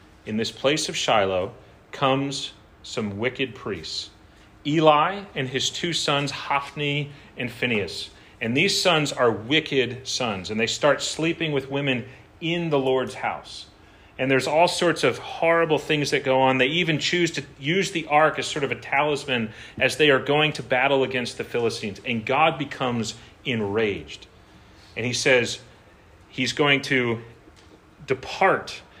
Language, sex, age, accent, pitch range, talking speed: English, male, 40-59, American, 115-150 Hz, 155 wpm